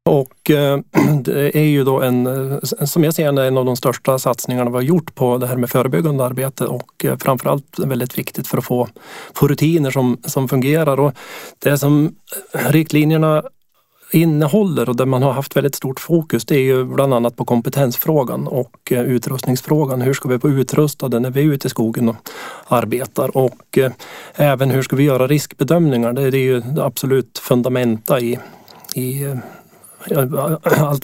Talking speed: 165 wpm